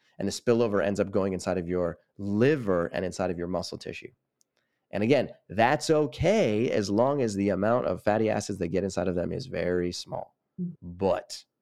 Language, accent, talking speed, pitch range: English, American, 190 wpm, 85-95 Hz